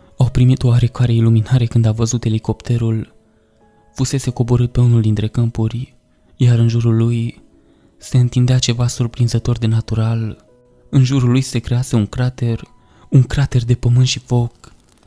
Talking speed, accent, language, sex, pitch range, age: 145 wpm, native, Romanian, male, 115-125 Hz, 20-39